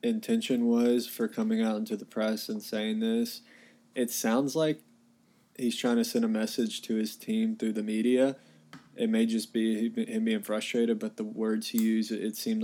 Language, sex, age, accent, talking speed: English, male, 20-39, American, 190 wpm